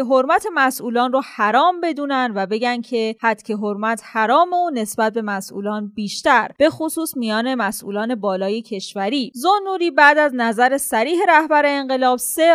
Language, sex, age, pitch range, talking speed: Persian, female, 20-39, 225-310 Hz, 145 wpm